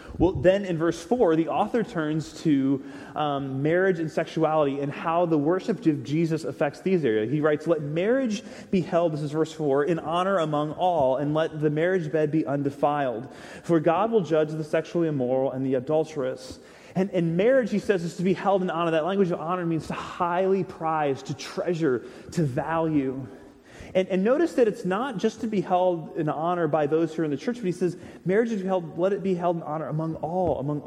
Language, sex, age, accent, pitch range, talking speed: English, male, 30-49, American, 140-175 Hz, 215 wpm